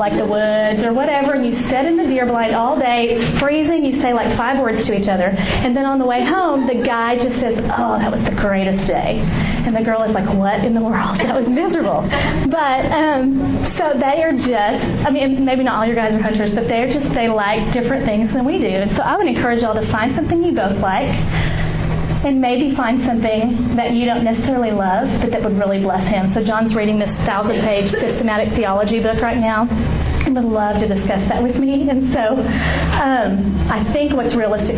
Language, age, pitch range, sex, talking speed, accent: English, 30-49, 210-255 Hz, female, 220 wpm, American